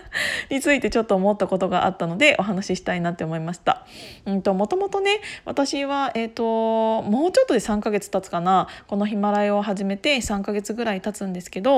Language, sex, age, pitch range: Japanese, female, 20-39, 185-225 Hz